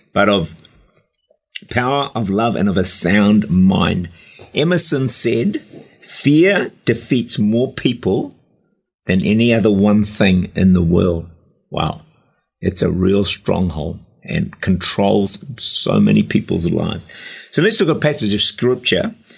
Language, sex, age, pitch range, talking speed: English, male, 50-69, 100-135 Hz, 135 wpm